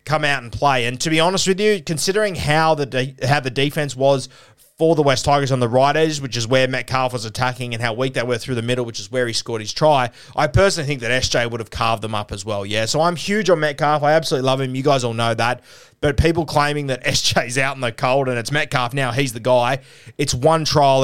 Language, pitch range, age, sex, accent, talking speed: English, 120-145 Hz, 20-39, male, Australian, 260 wpm